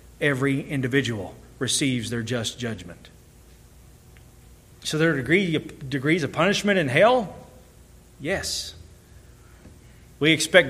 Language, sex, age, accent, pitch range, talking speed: English, male, 40-59, American, 125-160 Hz, 100 wpm